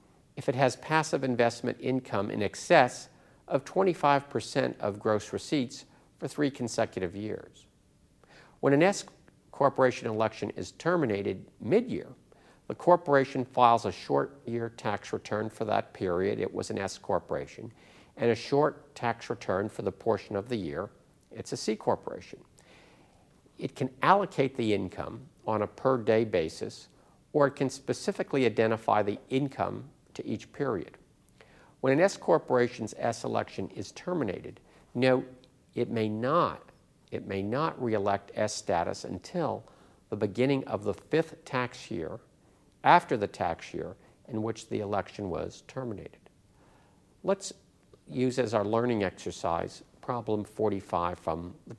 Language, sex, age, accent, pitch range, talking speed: English, male, 50-69, American, 105-135 Hz, 140 wpm